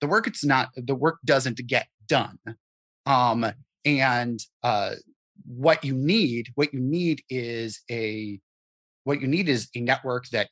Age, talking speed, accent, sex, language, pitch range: 30-49, 155 wpm, American, male, English, 115-145 Hz